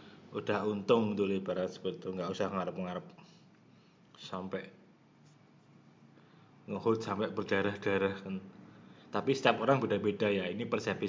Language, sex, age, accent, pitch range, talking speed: Indonesian, male, 20-39, native, 100-120 Hz, 115 wpm